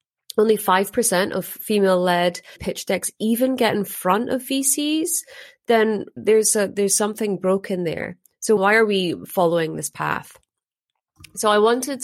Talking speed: 150 wpm